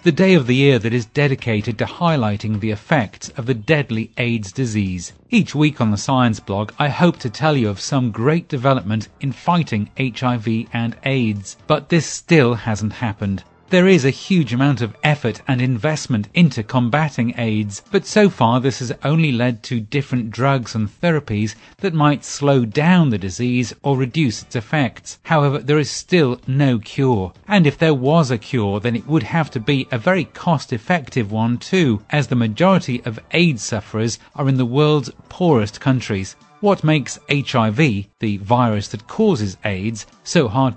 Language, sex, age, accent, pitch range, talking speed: English, male, 40-59, British, 110-150 Hz, 180 wpm